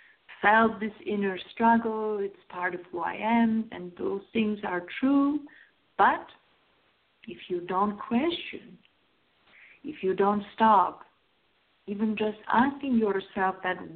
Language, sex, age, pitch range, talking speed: English, female, 50-69, 200-245 Hz, 125 wpm